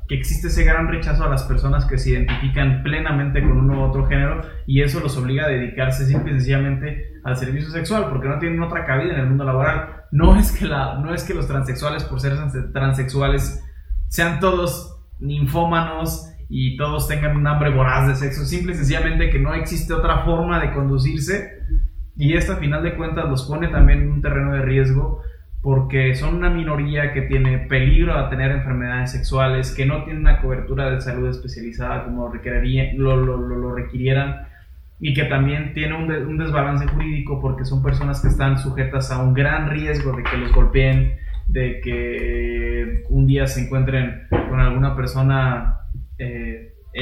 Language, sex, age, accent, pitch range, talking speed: Spanish, male, 20-39, Mexican, 125-150 Hz, 175 wpm